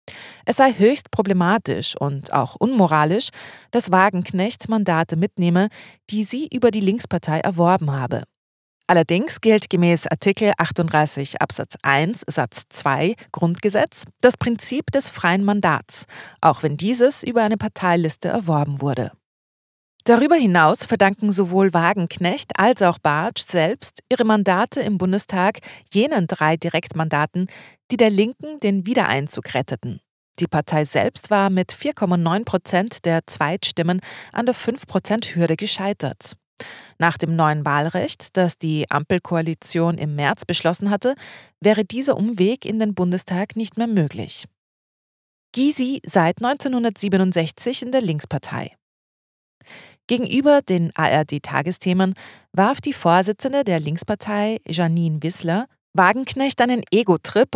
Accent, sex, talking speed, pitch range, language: German, female, 120 wpm, 165-220 Hz, German